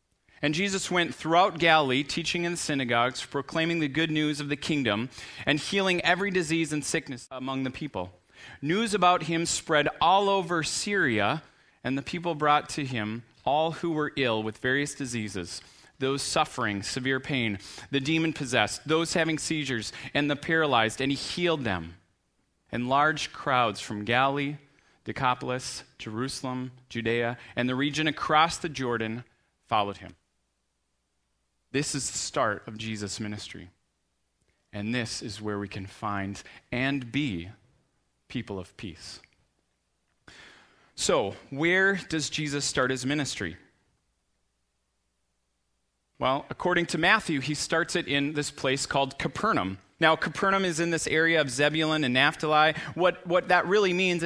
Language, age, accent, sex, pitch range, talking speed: English, 30-49, American, male, 110-160 Hz, 145 wpm